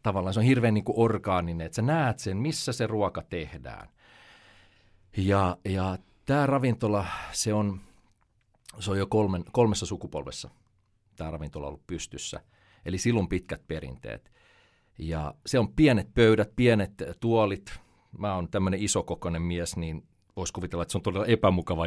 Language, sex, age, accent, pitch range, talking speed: Finnish, male, 40-59, native, 85-110 Hz, 150 wpm